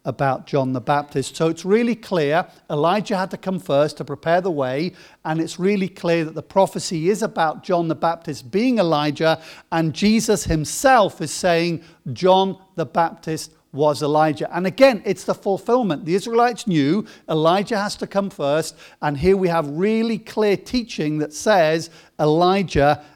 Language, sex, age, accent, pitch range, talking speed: English, male, 50-69, British, 155-200 Hz, 165 wpm